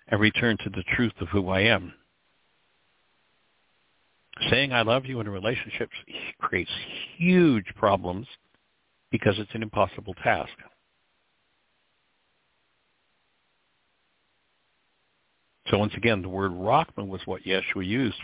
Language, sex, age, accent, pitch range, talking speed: English, male, 60-79, American, 95-135 Hz, 110 wpm